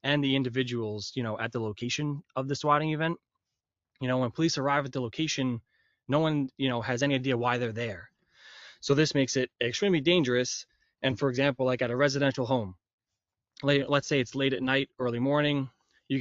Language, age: English, 20-39